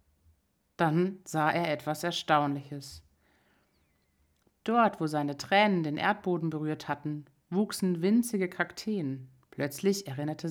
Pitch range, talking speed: 140-175 Hz, 105 wpm